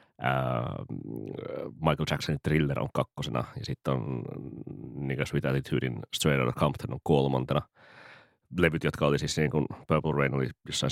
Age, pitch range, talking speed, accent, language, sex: 30-49, 70-80 Hz, 150 wpm, native, Finnish, male